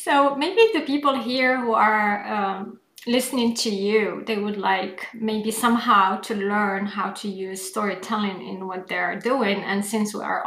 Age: 30-49